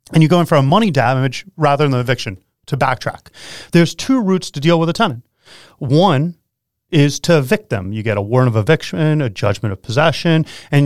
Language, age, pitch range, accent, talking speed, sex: English, 30-49, 120-170 Hz, American, 210 wpm, male